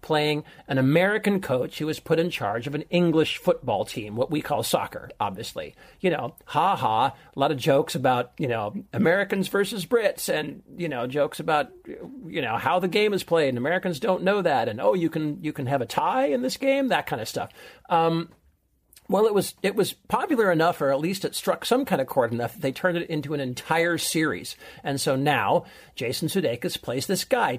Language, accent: English, American